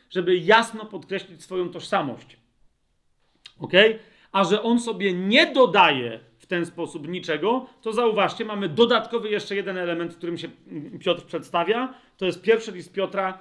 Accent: native